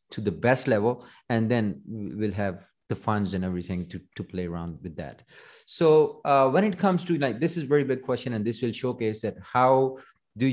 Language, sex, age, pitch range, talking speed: English, male, 30-49, 95-125 Hz, 215 wpm